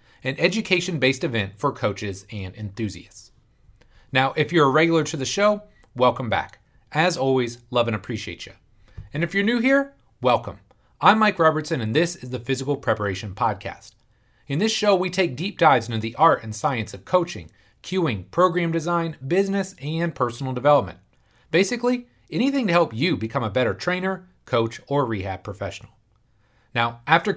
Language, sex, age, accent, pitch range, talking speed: English, male, 30-49, American, 115-175 Hz, 165 wpm